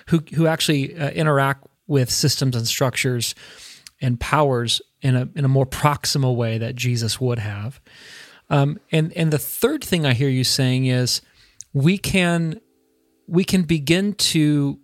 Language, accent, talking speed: English, American, 160 wpm